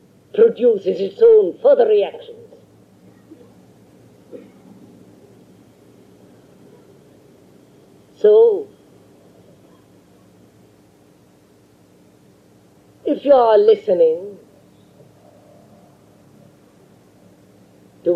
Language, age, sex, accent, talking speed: English, 50-69, female, Indian, 35 wpm